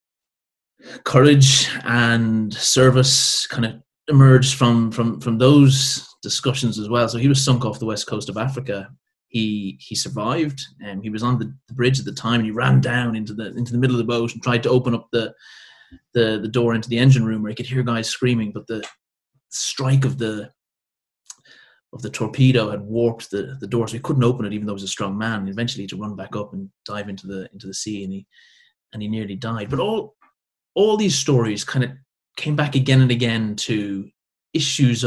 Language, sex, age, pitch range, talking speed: English, male, 30-49, 110-135 Hz, 215 wpm